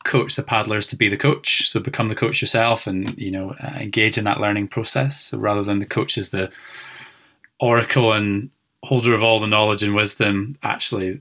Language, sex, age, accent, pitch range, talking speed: English, male, 10-29, British, 100-120 Hz, 200 wpm